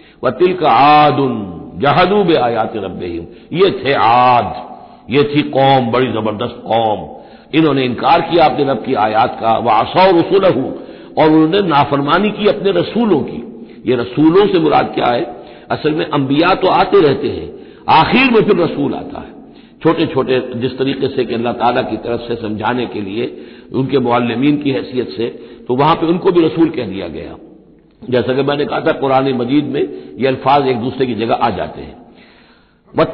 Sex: male